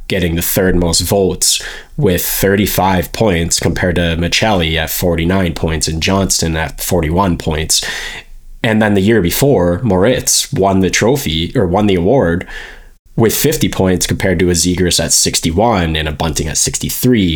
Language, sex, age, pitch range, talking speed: English, male, 20-39, 85-100 Hz, 160 wpm